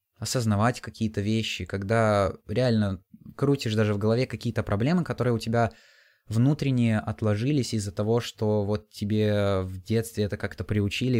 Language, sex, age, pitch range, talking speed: Russian, male, 20-39, 100-120 Hz, 140 wpm